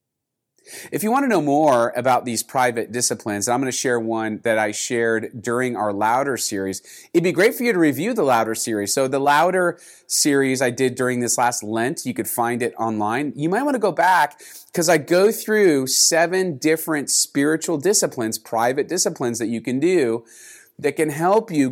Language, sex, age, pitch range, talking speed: English, male, 30-49, 115-150 Hz, 200 wpm